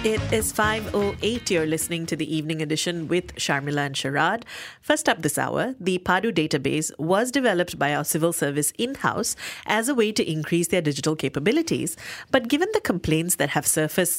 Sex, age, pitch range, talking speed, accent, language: female, 30-49, 150-190 Hz, 180 wpm, Indian, English